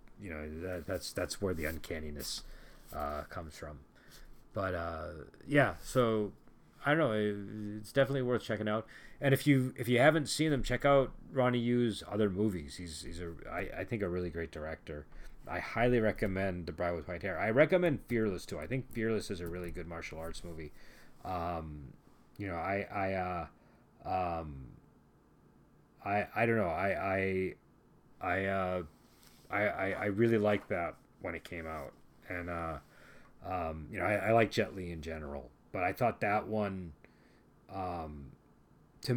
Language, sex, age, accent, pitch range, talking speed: English, male, 30-49, American, 80-110 Hz, 170 wpm